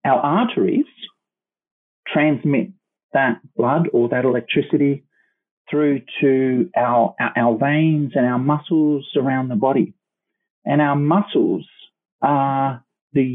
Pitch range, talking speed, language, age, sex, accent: 130-160 Hz, 110 wpm, English, 40-59, male, Australian